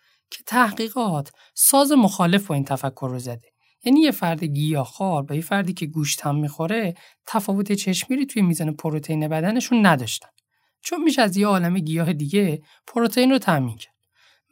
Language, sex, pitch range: Persian, male, 150-225 Hz